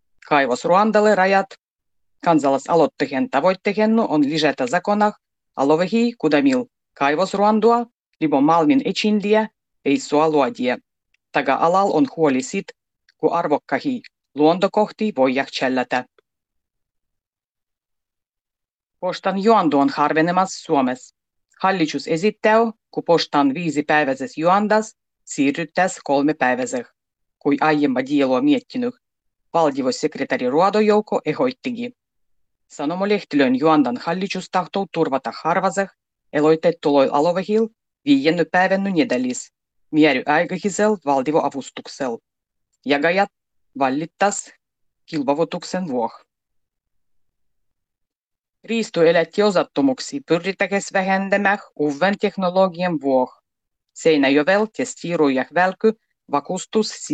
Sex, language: female, Finnish